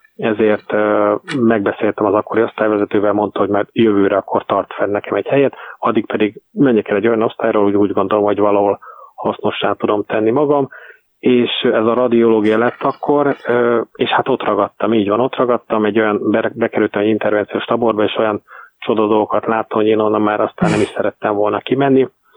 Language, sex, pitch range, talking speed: Hungarian, male, 105-120 Hz, 180 wpm